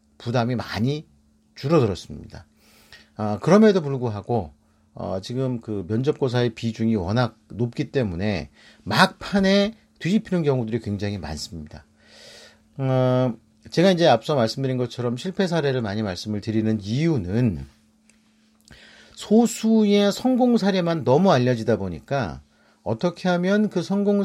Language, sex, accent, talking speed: English, male, Korean, 100 wpm